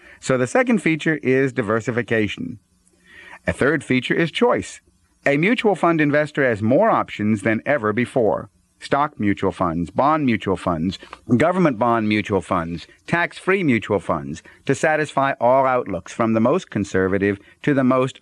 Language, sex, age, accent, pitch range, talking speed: English, male, 50-69, American, 110-145 Hz, 150 wpm